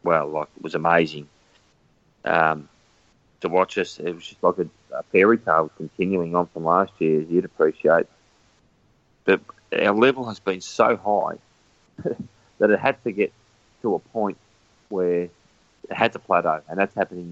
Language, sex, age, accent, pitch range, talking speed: English, male, 30-49, Australian, 80-95 Hz, 160 wpm